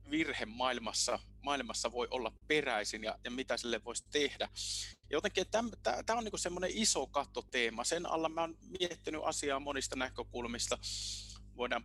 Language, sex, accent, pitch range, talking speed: Finnish, male, native, 100-140 Hz, 140 wpm